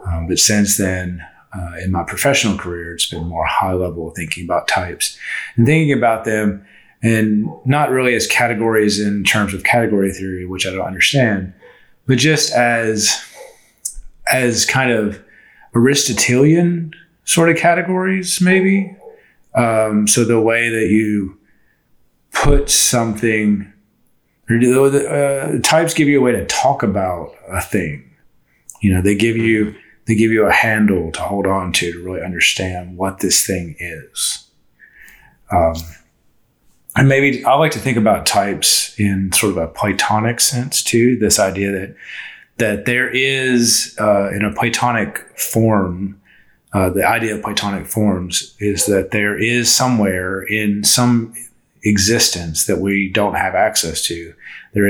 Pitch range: 95-120 Hz